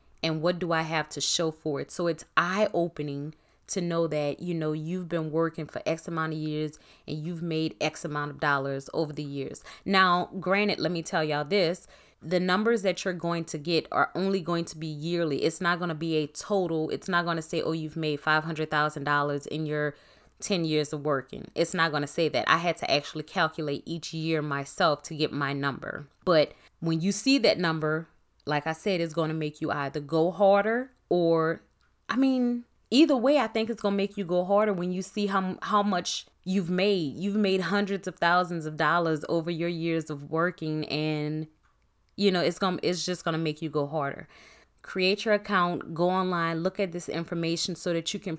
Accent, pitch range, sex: American, 155-185 Hz, female